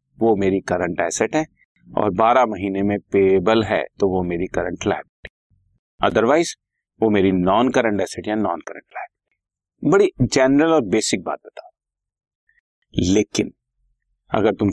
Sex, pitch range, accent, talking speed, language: male, 100-135 Hz, native, 145 wpm, Hindi